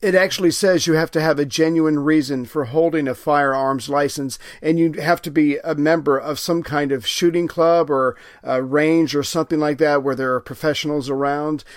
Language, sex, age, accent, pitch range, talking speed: English, male, 50-69, American, 140-160 Hz, 205 wpm